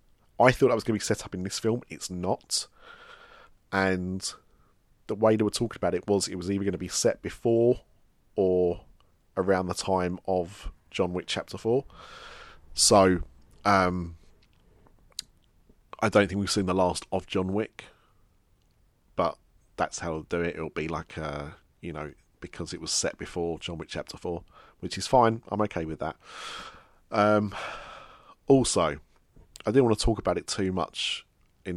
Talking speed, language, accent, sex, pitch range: 175 wpm, English, British, male, 85-105 Hz